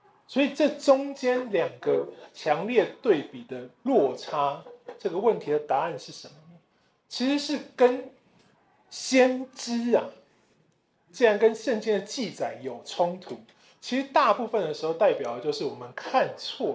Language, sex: Chinese, male